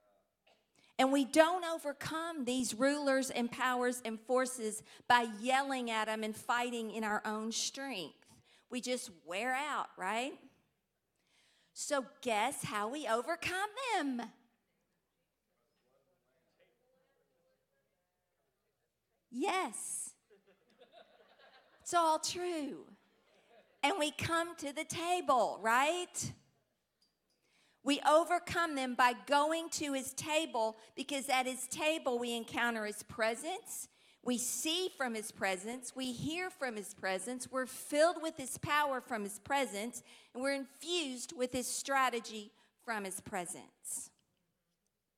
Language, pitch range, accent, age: English, 225-300 Hz, American, 50-69